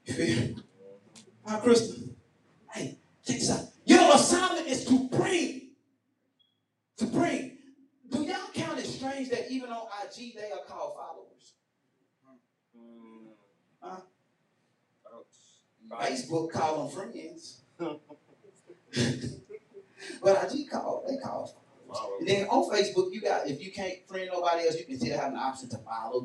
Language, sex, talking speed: English, male, 135 wpm